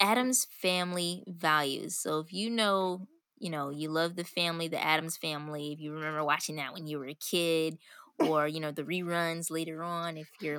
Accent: American